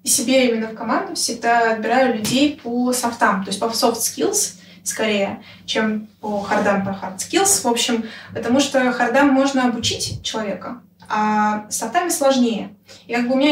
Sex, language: female, Russian